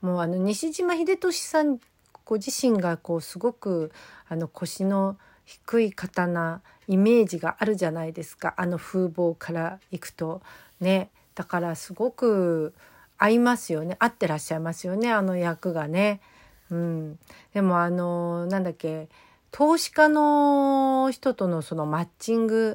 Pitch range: 170-230 Hz